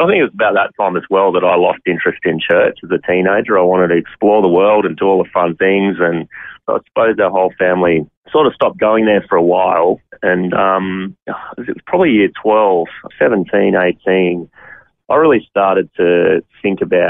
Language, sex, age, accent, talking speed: English, male, 30-49, Australian, 205 wpm